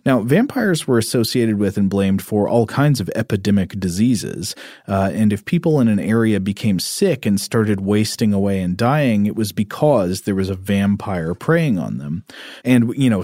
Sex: male